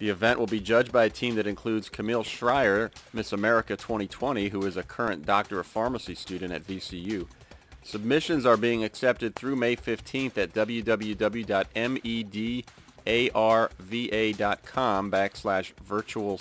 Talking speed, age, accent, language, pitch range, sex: 130 wpm, 40-59, American, English, 100-120 Hz, male